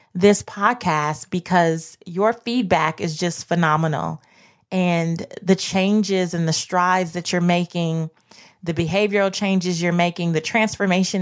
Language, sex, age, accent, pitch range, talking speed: English, female, 20-39, American, 165-200 Hz, 130 wpm